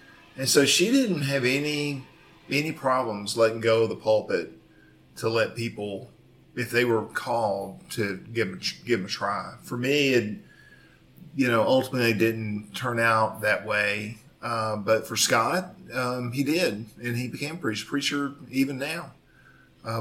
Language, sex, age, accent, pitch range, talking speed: English, male, 40-59, American, 105-130 Hz, 150 wpm